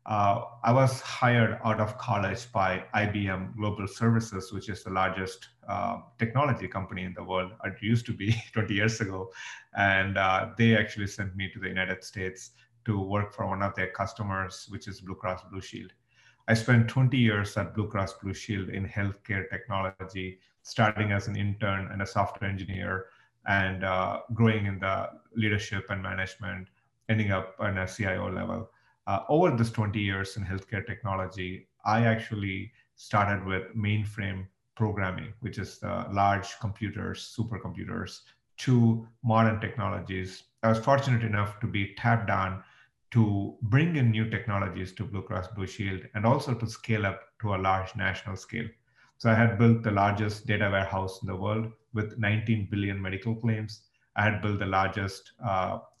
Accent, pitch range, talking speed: Indian, 95-115 Hz, 170 wpm